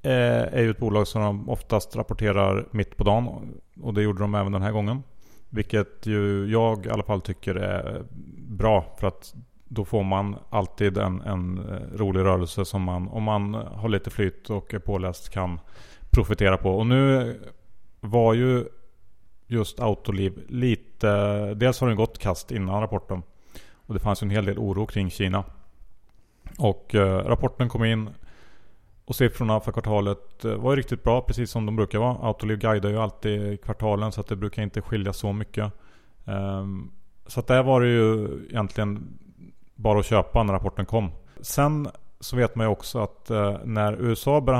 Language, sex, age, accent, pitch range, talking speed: Swedish, male, 30-49, Norwegian, 100-115 Hz, 170 wpm